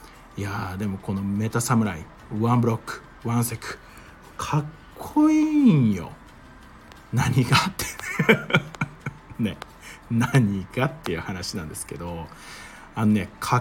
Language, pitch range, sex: Japanese, 105-145 Hz, male